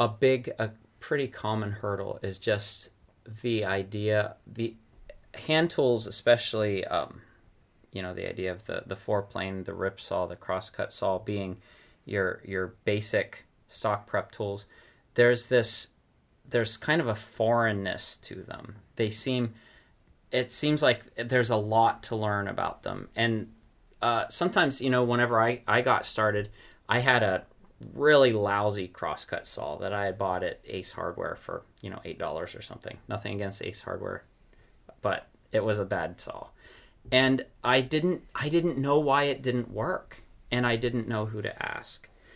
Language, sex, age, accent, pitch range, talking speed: English, male, 30-49, American, 105-120 Hz, 165 wpm